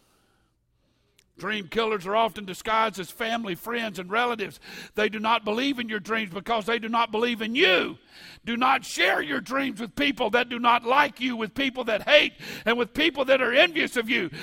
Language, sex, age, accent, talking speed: English, male, 50-69, American, 200 wpm